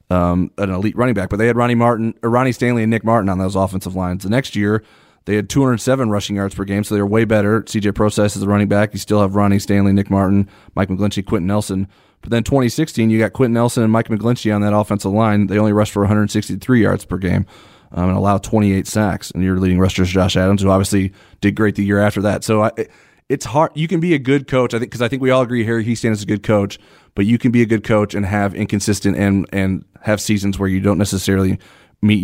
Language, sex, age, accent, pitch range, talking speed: English, male, 30-49, American, 100-110 Hz, 255 wpm